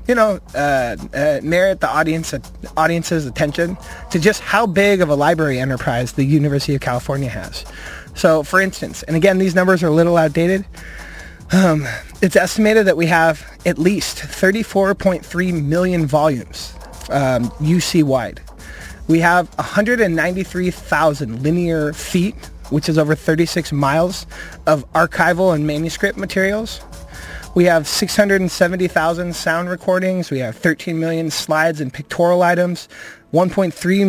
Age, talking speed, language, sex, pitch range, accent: 20-39, 135 wpm, English, male, 155-185 Hz, American